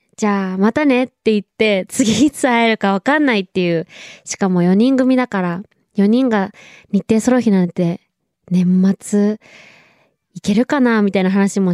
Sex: female